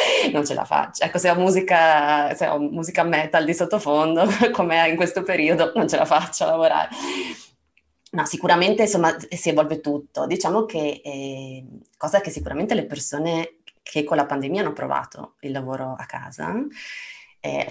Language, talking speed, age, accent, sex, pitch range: Italian, 170 wpm, 20-39, native, female, 135-165 Hz